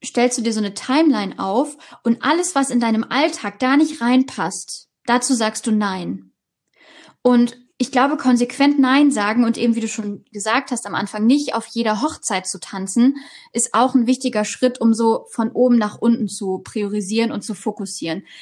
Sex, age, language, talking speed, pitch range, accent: female, 20-39, German, 185 wpm, 210-255 Hz, German